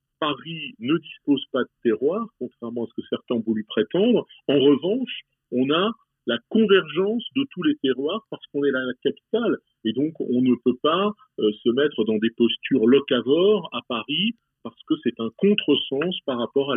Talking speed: 185 wpm